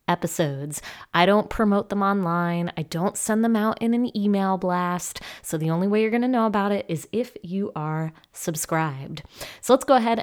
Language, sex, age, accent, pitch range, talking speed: English, female, 20-39, American, 170-230 Hz, 200 wpm